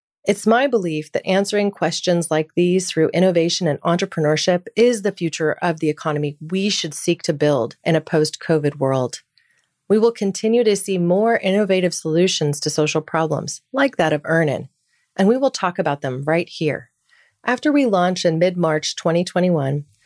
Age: 30-49